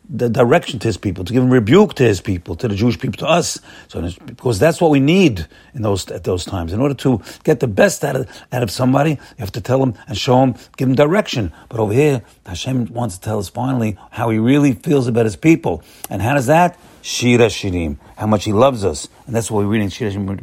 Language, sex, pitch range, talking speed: English, male, 105-140 Hz, 250 wpm